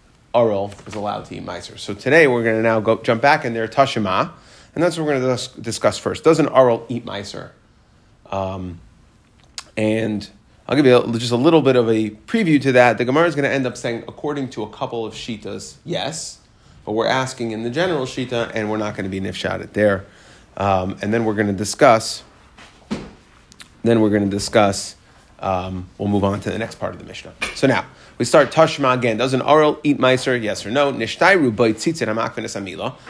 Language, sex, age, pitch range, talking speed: English, male, 30-49, 105-135 Hz, 210 wpm